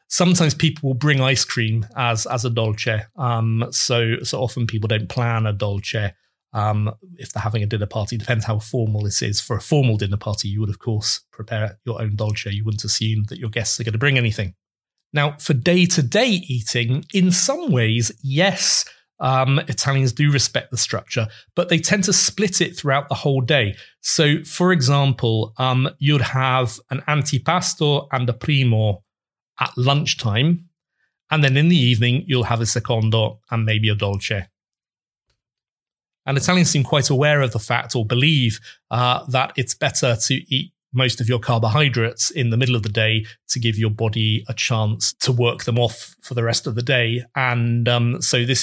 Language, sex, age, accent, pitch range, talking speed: English, male, 30-49, British, 110-135 Hz, 190 wpm